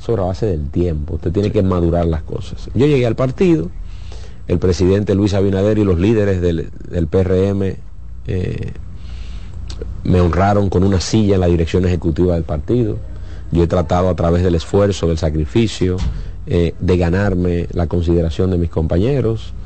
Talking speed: 165 wpm